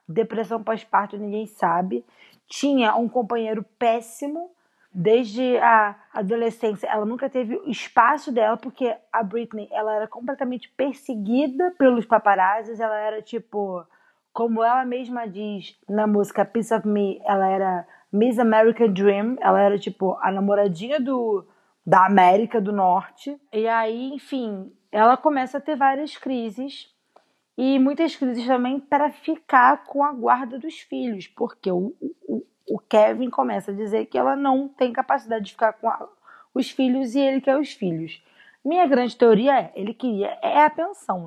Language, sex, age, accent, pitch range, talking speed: Portuguese, female, 20-39, Brazilian, 200-260 Hz, 155 wpm